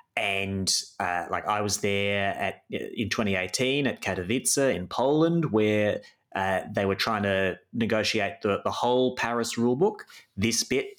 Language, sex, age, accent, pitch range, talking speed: English, male, 30-49, Australian, 100-135 Hz, 145 wpm